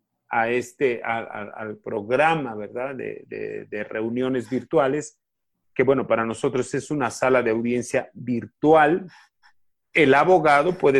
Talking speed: 120 wpm